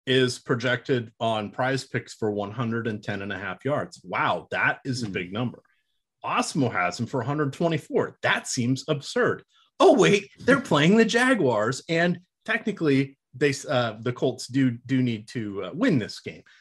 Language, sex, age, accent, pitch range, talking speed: English, male, 30-49, American, 110-145 Hz, 165 wpm